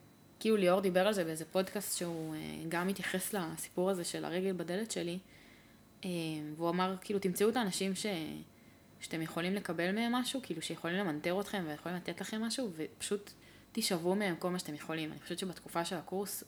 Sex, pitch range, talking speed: female, 165-205 Hz, 175 wpm